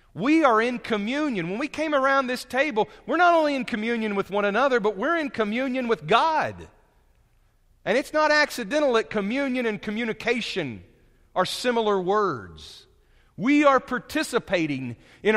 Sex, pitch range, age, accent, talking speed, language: male, 140-215 Hz, 40-59, American, 150 wpm, English